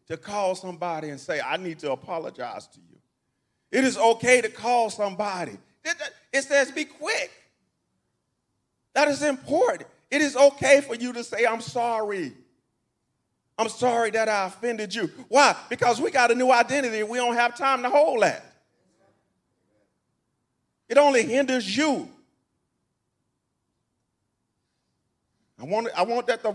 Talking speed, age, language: 145 wpm, 40-59, English